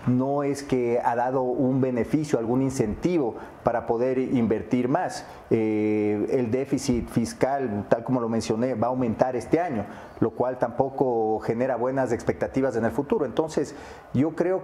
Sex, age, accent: male, 40-59, Mexican